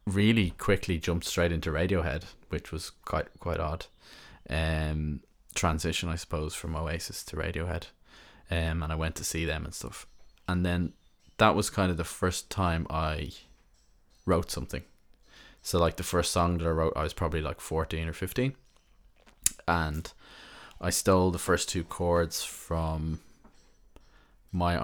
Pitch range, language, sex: 80-90 Hz, English, male